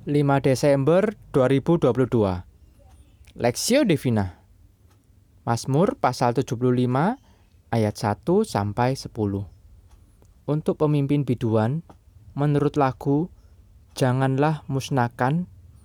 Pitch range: 100-140 Hz